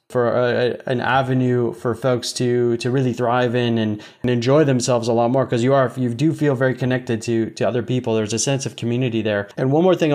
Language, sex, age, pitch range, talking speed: English, male, 20-39, 120-135 Hz, 235 wpm